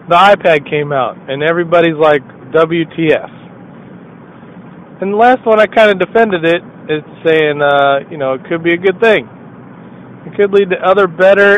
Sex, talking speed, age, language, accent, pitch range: male, 175 wpm, 40-59, English, American, 145-200 Hz